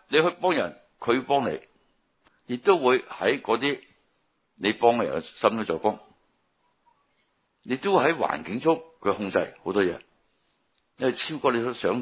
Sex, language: male, Chinese